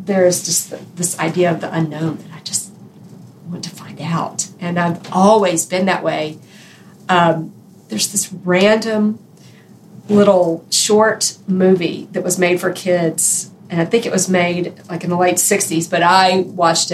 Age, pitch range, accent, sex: 40-59, 170-195 Hz, American, female